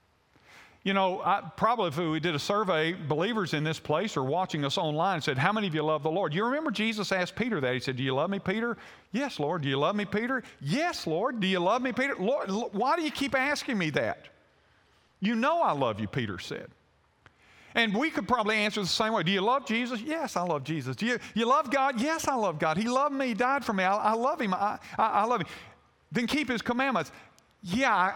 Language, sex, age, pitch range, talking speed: English, male, 50-69, 160-240 Hz, 240 wpm